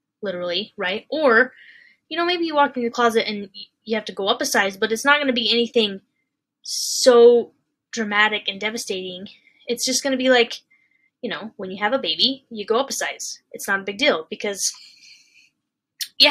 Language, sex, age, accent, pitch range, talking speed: English, female, 10-29, American, 220-280 Hz, 195 wpm